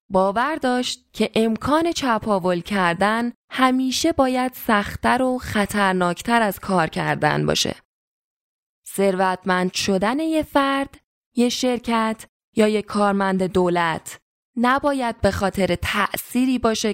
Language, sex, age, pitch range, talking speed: Persian, female, 10-29, 185-255 Hz, 105 wpm